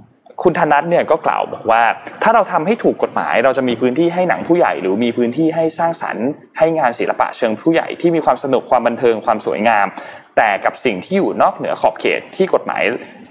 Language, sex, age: Thai, male, 20-39